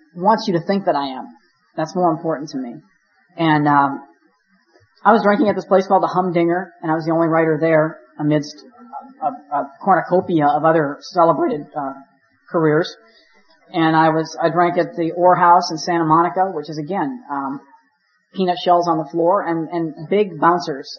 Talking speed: 185 wpm